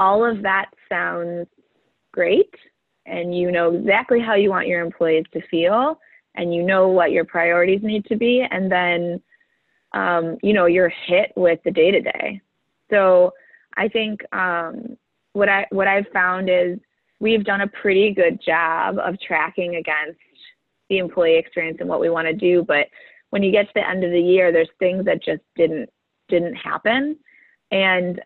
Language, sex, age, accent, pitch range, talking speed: English, female, 20-39, American, 170-220 Hz, 175 wpm